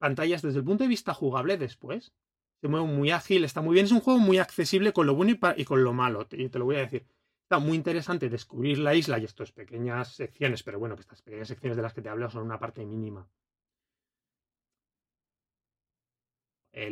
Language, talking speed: Spanish, 215 wpm